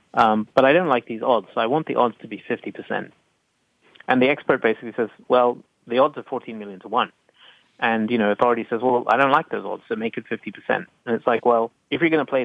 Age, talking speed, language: 30-49, 250 wpm, English